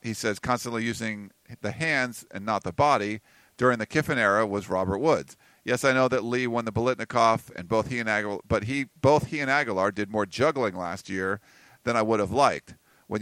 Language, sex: English, male